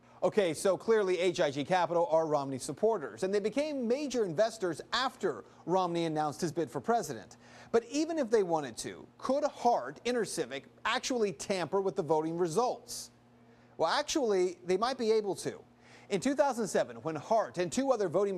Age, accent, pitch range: 30-49, American, 165-230 Hz